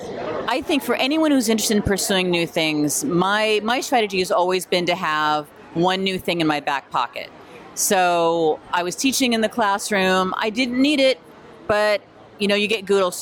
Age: 40-59